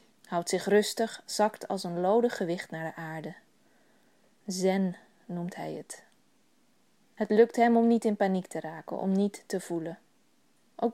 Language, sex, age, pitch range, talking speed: Dutch, female, 20-39, 190-230 Hz, 160 wpm